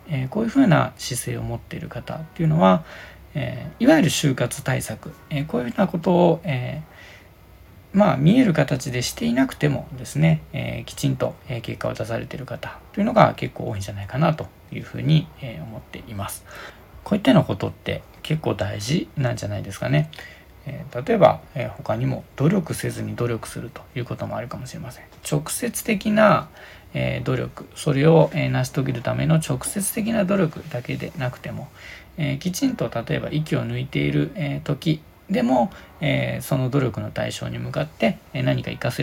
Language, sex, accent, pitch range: Japanese, male, native, 105-160 Hz